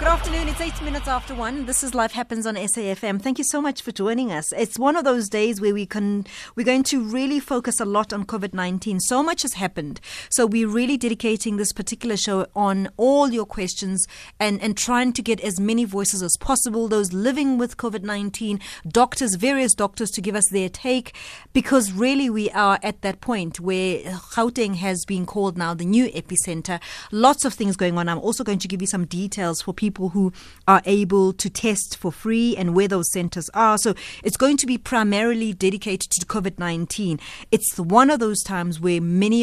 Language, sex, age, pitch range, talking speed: English, female, 30-49, 185-230 Hz, 205 wpm